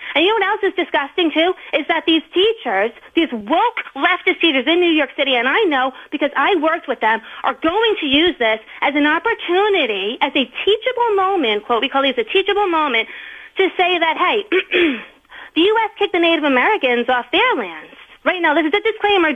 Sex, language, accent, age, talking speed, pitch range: female, English, American, 30-49, 205 wpm, 260-370 Hz